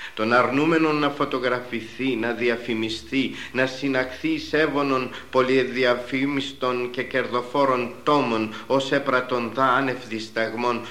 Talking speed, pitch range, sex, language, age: 95 wpm, 105-135 Hz, male, Greek, 50-69